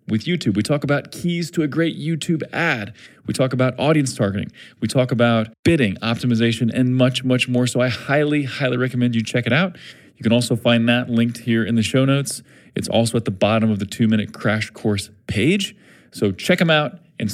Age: 30-49